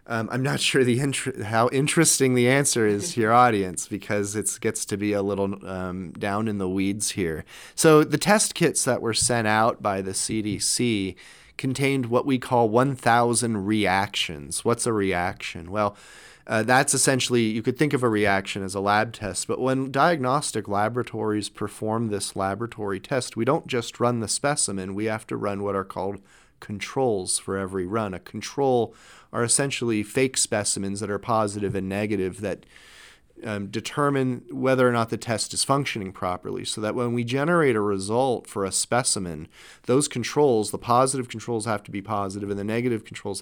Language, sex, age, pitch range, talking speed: English, male, 30-49, 100-125 Hz, 180 wpm